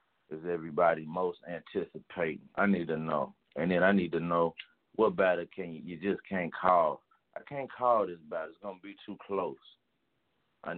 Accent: American